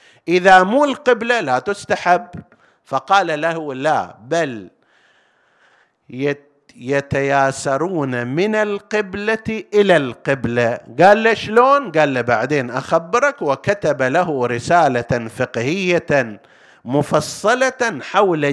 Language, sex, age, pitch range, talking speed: Arabic, male, 50-69, 130-200 Hz, 85 wpm